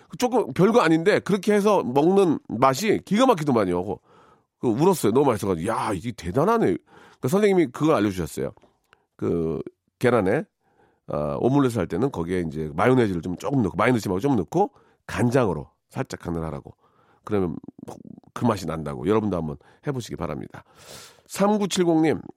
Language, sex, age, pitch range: Korean, male, 40-59, 105-150 Hz